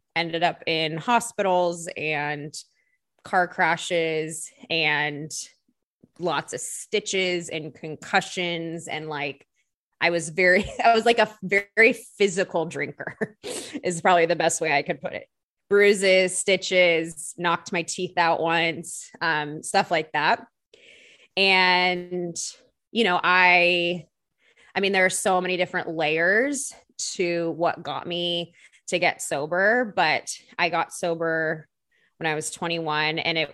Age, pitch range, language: 20-39, 160-190 Hz, English